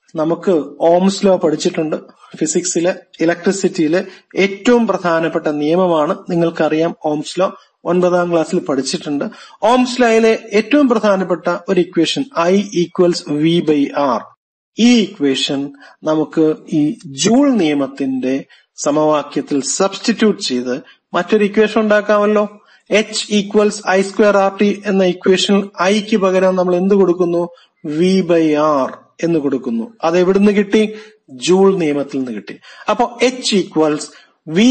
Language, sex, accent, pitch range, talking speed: Malayalam, male, native, 155-210 Hz, 110 wpm